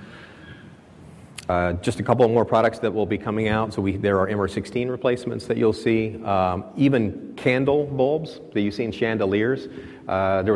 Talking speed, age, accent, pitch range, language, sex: 175 wpm, 30-49, American, 95-115 Hz, English, male